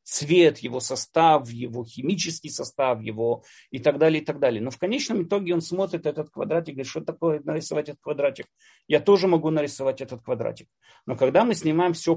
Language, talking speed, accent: Russian, 190 wpm, native